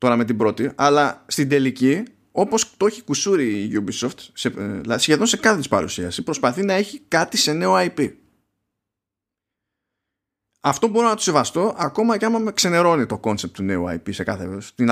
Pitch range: 115-175 Hz